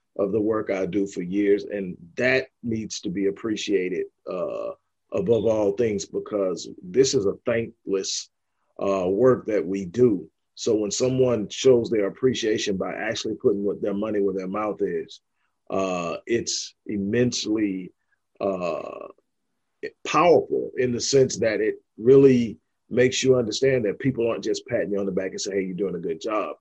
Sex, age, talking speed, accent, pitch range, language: male, 40-59, 165 wpm, American, 105-155 Hz, English